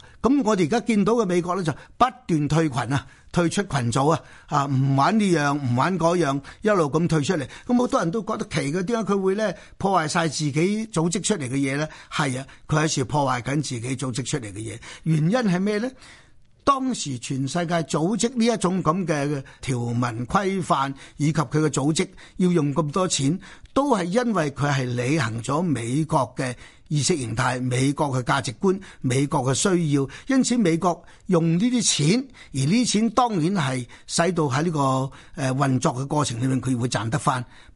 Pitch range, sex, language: 135-180 Hz, male, Chinese